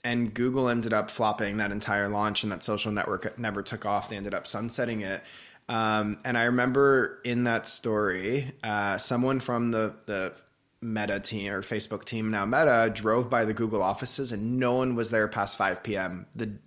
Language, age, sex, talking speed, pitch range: English, 20-39, male, 190 wpm, 105-120 Hz